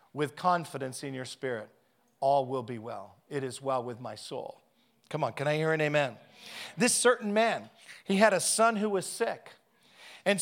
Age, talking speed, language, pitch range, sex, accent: 40-59, 190 wpm, English, 155-195 Hz, male, American